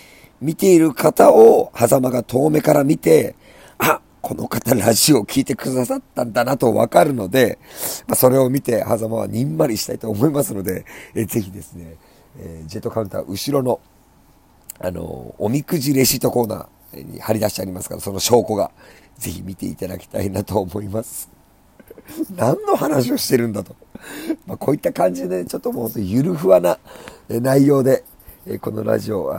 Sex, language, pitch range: male, Japanese, 100-130 Hz